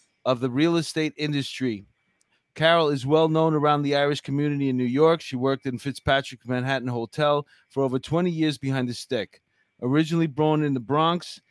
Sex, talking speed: male, 175 wpm